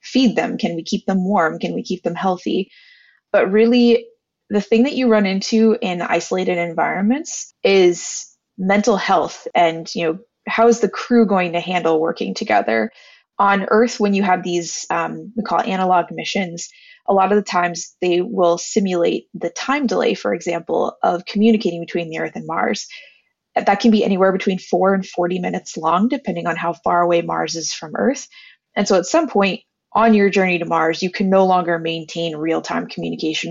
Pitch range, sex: 175-225 Hz, female